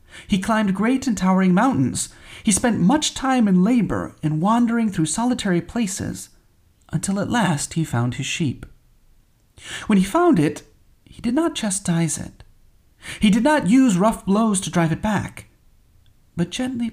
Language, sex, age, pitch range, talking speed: English, male, 40-59, 135-210 Hz, 160 wpm